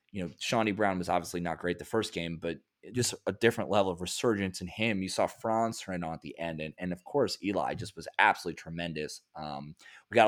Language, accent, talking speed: English, American, 235 wpm